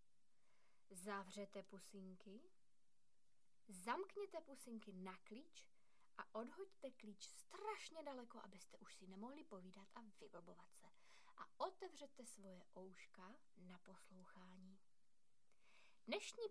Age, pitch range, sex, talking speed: 20-39, 190-265 Hz, female, 95 wpm